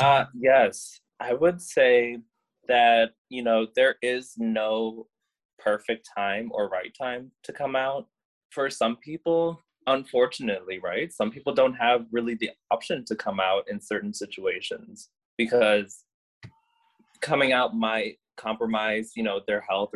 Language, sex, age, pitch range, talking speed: English, male, 20-39, 105-135 Hz, 140 wpm